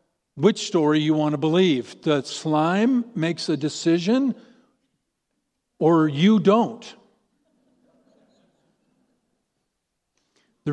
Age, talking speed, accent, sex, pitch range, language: 50-69, 85 wpm, American, male, 150-205 Hz, English